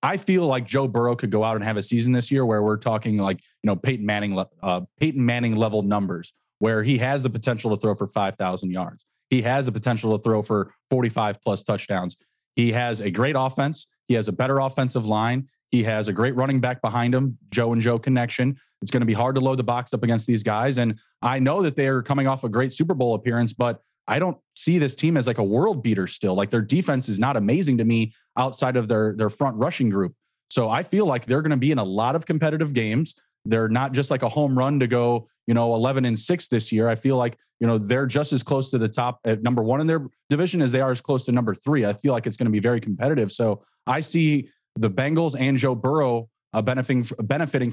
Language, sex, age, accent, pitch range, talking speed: English, male, 30-49, American, 110-135 Hz, 250 wpm